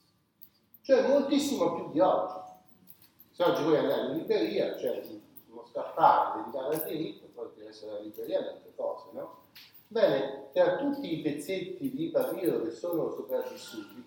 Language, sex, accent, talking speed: Italian, male, native, 150 wpm